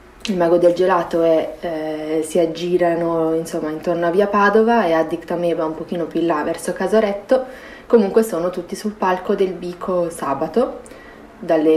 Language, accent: Italian, native